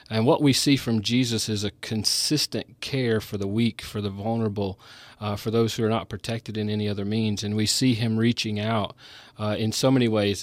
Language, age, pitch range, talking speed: English, 40-59, 105-120 Hz, 220 wpm